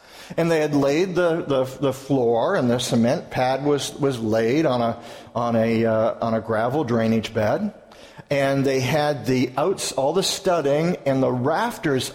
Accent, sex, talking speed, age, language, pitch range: American, male, 180 wpm, 50-69, English, 135-185 Hz